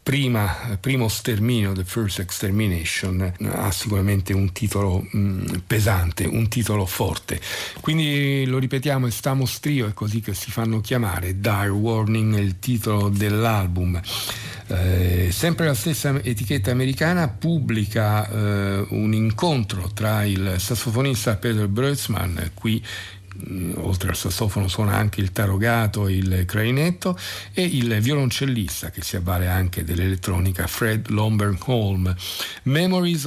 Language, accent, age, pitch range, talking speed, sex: Italian, native, 50-69, 95-120 Hz, 125 wpm, male